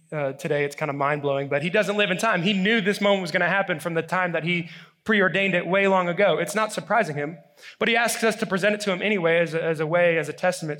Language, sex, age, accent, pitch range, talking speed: English, male, 20-39, American, 165-215 Hz, 285 wpm